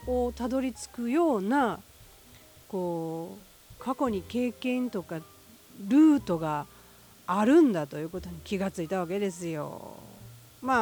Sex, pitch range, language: female, 160-225 Hz, Japanese